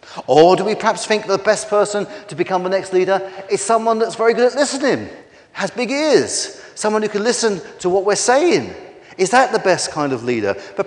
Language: English